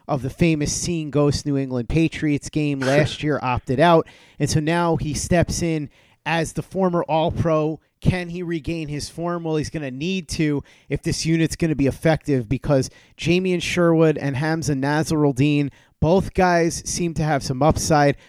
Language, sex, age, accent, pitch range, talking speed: English, male, 30-49, American, 145-170 Hz, 180 wpm